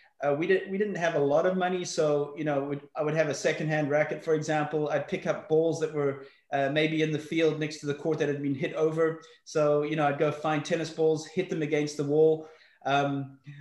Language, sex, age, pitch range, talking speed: English, male, 30-49, 145-175 Hz, 240 wpm